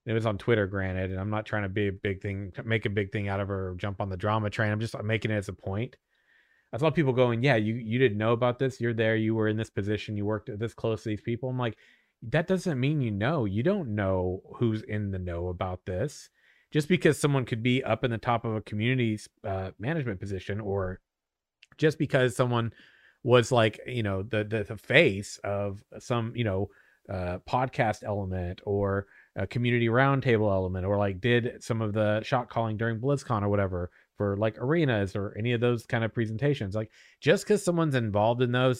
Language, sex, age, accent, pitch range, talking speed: English, male, 30-49, American, 105-130 Hz, 220 wpm